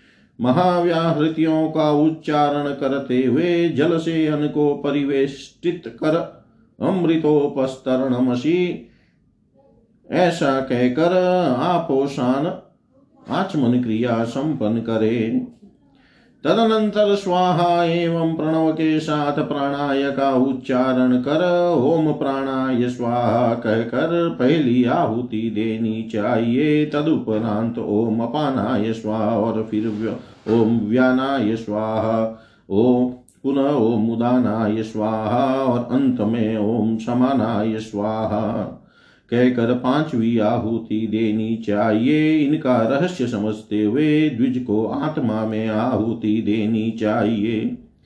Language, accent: Hindi, native